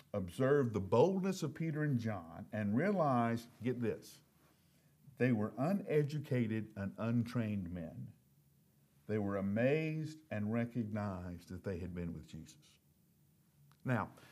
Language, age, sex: English, 50-69, male